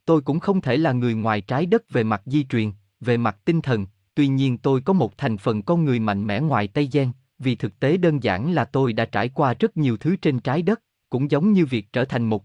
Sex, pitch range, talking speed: male, 110-155 Hz, 260 wpm